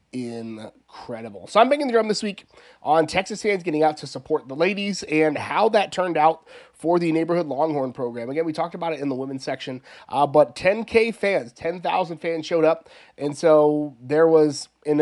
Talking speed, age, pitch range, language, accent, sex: 210 wpm, 30-49, 135-170 Hz, English, American, male